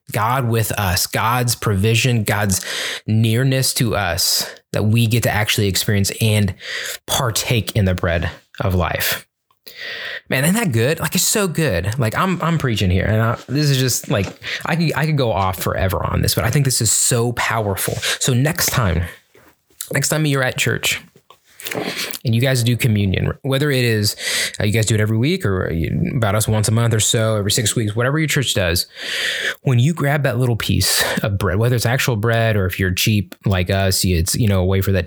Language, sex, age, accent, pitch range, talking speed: English, male, 20-39, American, 100-130 Hz, 205 wpm